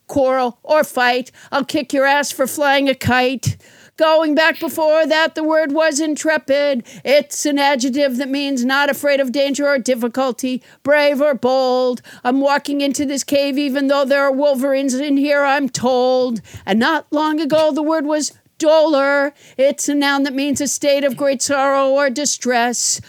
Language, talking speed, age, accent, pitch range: English, 175 wpm, 50-69, American, 260-290 Hz